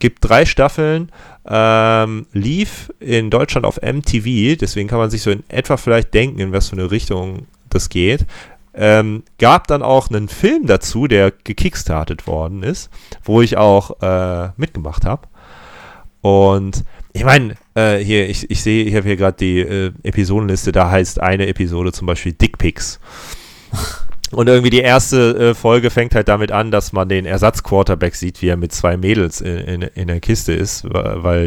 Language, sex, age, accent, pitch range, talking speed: German, male, 30-49, German, 90-115 Hz, 170 wpm